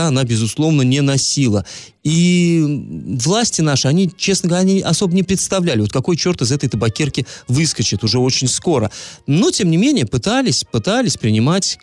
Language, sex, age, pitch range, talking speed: Russian, male, 30-49, 120-165 Hz, 155 wpm